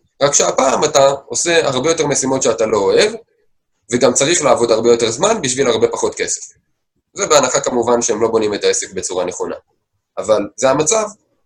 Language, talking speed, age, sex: Hebrew, 175 wpm, 20-39, male